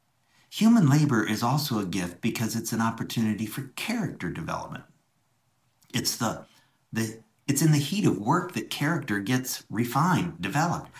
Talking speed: 145 wpm